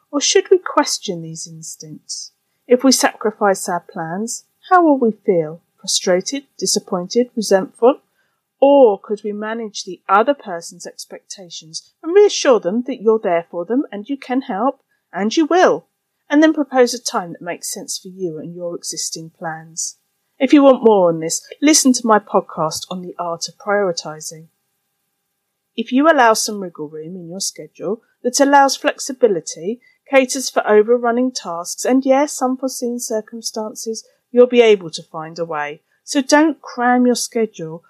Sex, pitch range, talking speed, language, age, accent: female, 180-265 Hz, 160 wpm, English, 40-59, British